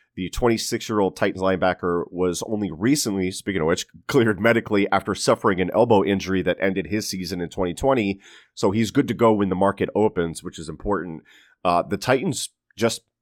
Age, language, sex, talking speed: 30-49, English, male, 175 wpm